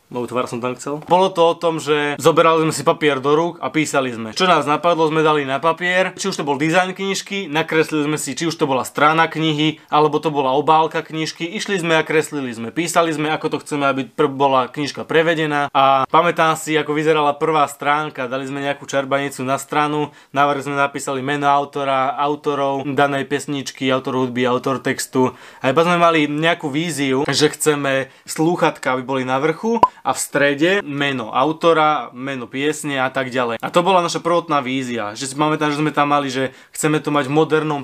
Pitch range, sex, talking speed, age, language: 135-160 Hz, male, 195 wpm, 20-39, Slovak